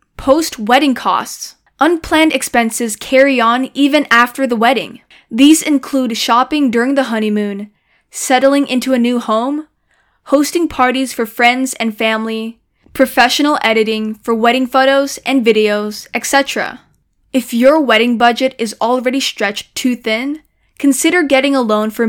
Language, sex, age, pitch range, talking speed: English, female, 10-29, 230-280 Hz, 135 wpm